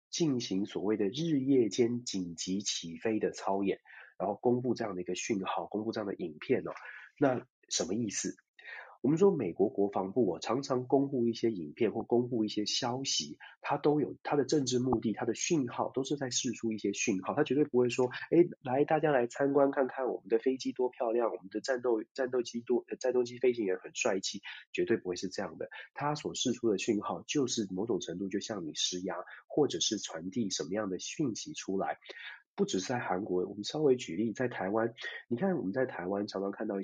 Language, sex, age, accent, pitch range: Chinese, male, 30-49, native, 100-130 Hz